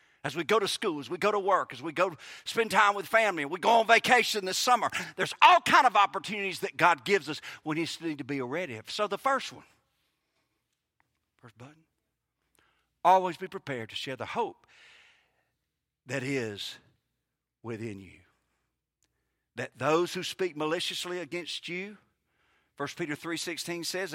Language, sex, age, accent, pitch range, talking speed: English, male, 50-69, American, 125-185 Hz, 165 wpm